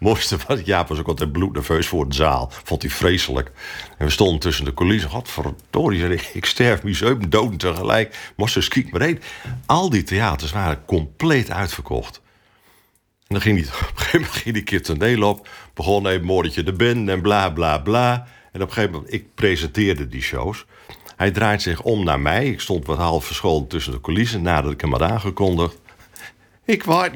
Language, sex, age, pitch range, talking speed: Dutch, male, 50-69, 80-115 Hz, 200 wpm